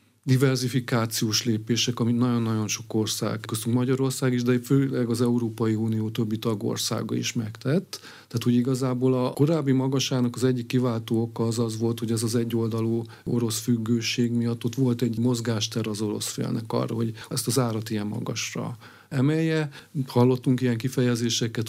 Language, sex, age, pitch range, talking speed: Hungarian, male, 40-59, 115-130 Hz, 150 wpm